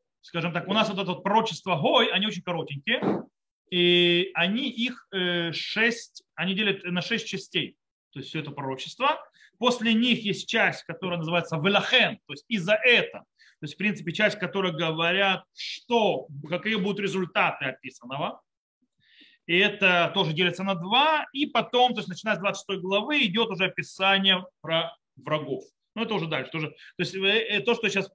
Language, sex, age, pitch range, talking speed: Russian, male, 30-49, 180-230 Hz, 170 wpm